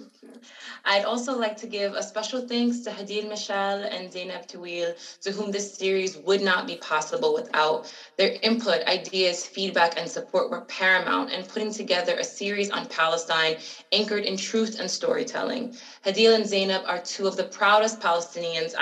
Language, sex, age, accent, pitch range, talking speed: English, female, 20-39, American, 185-235 Hz, 165 wpm